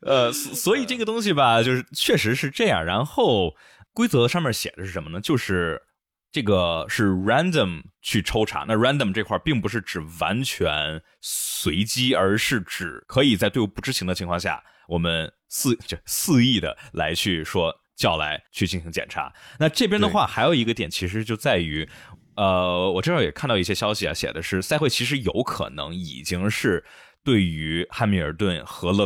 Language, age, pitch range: Chinese, 20-39, 85-115 Hz